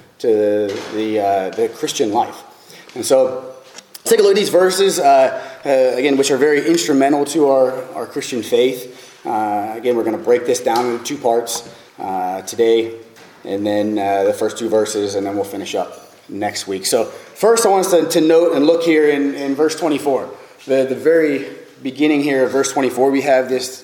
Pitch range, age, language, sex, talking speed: 115-170 Hz, 30-49, English, male, 200 wpm